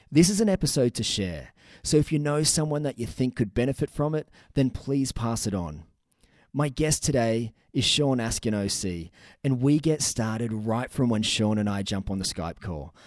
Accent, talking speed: Australian, 205 wpm